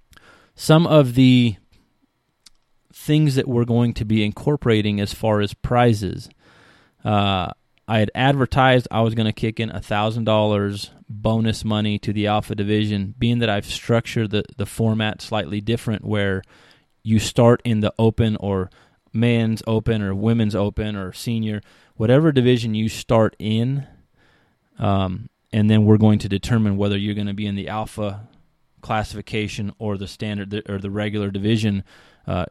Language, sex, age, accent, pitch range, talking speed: English, male, 20-39, American, 105-115 Hz, 155 wpm